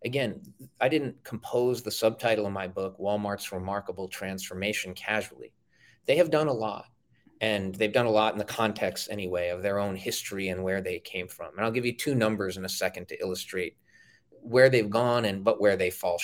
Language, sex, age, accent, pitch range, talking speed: English, male, 30-49, American, 95-120 Hz, 205 wpm